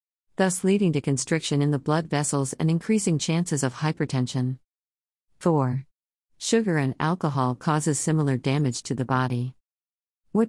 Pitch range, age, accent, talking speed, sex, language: 130-160 Hz, 50-69, American, 135 wpm, female, English